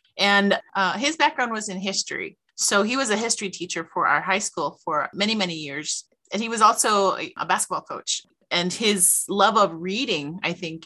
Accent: American